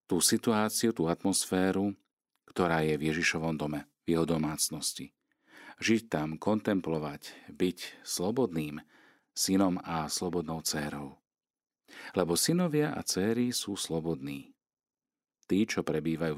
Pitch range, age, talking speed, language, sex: 80-100 Hz, 40-59, 110 wpm, Slovak, male